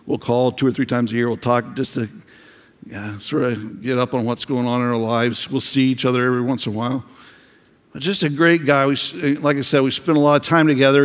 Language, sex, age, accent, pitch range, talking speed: English, male, 60-79, American, 120-145 Hz, 265 wpm